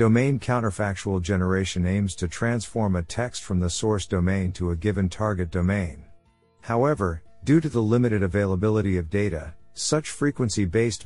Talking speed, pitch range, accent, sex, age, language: 145 wpm, 90-115 Hz, American, male, 50-69, English